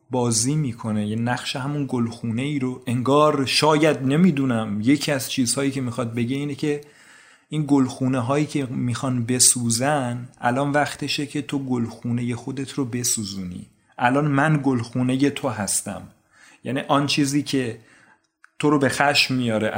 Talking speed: 145 wpm